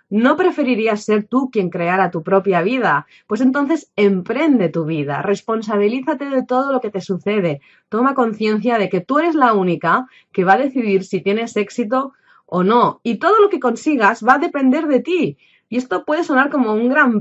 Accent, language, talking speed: Spanish, Spanish, 190 wpm